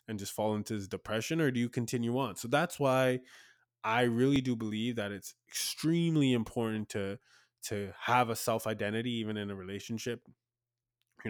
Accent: American